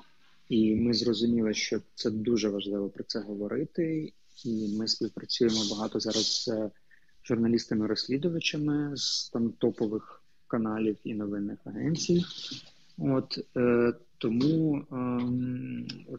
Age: 20-39